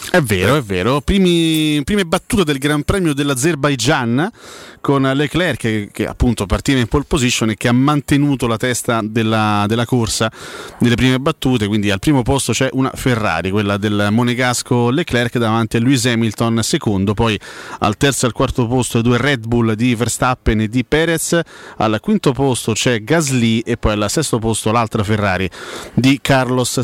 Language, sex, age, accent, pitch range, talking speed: Italian, male, 30-49, native, 110-135 Hz, 170 wpm